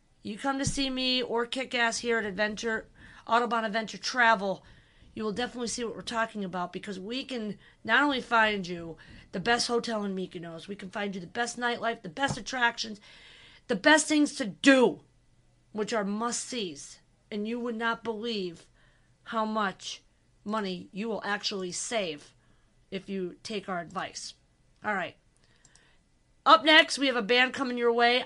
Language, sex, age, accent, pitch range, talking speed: English, female, 40-59, American, 205-255 Hz, 170 wpm